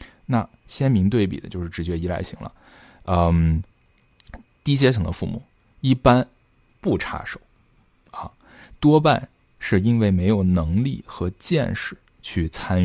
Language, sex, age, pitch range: Chinese, male, 20-39, 90-120 Hz